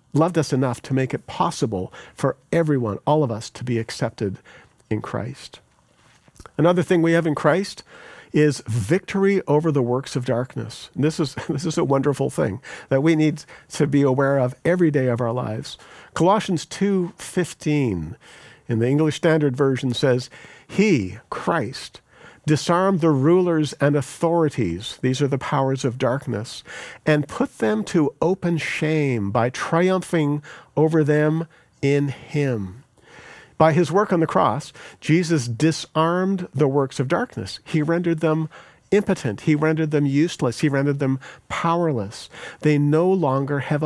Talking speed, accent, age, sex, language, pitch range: 150 wpm, American, 50-69, male, English, 130-165 Hz